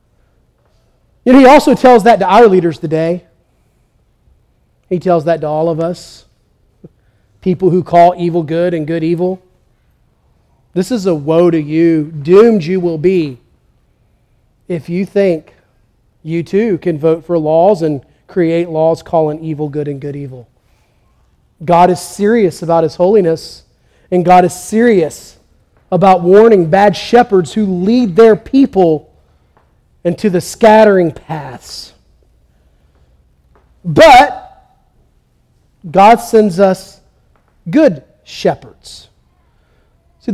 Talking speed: 125 wpm